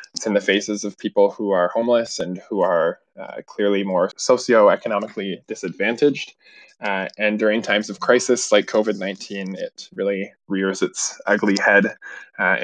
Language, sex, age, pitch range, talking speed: English, male, 20-39, 100-125 Hz, 150 wpm